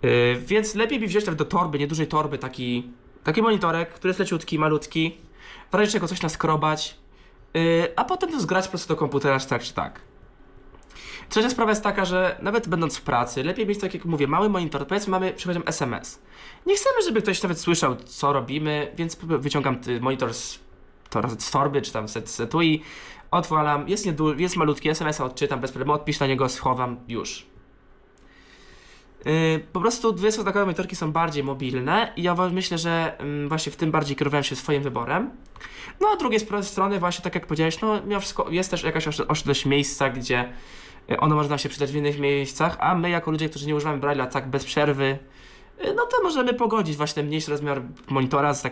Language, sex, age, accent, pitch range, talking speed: Polish, male, 20-39, native, 140-185 Hz, 195 wpm